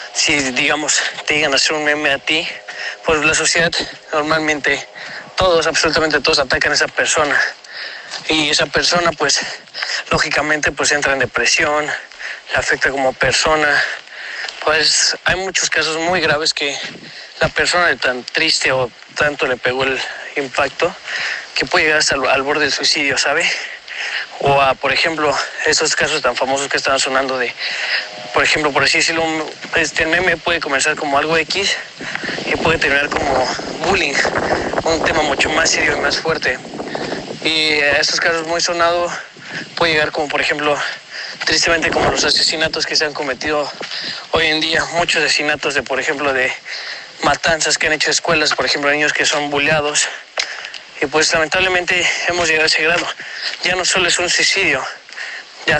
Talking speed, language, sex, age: 160 wpm, Spanish, male, 20-39